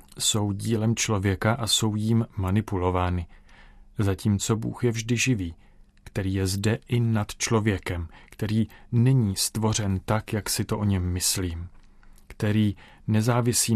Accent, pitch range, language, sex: native, 95-120 Hz, Czech, male